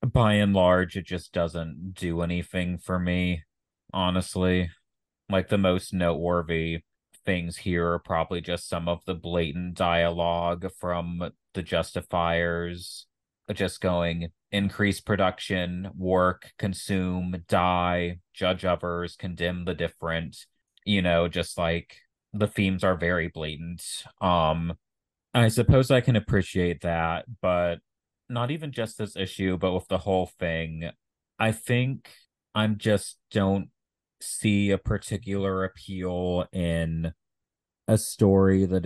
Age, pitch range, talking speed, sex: 30-49, 85-95 Hz, 125 wpm, male